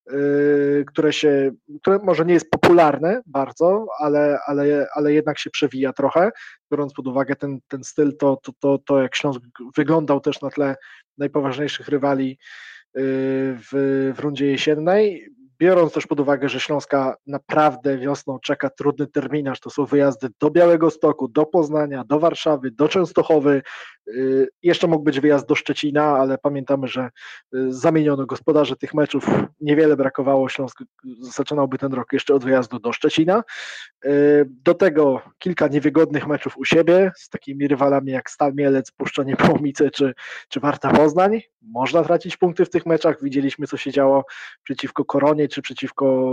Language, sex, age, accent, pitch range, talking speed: Polish, male, 20-39, native, 135-155 Hz, 155 wpm